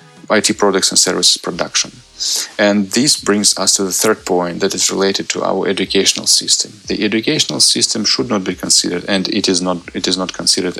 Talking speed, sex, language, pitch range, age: 195 wpm, male, English, 90-100 Hz, 30-49